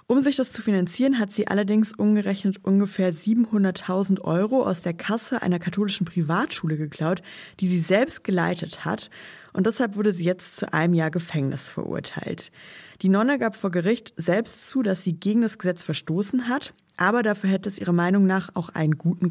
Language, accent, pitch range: German, German, 165-215 Hz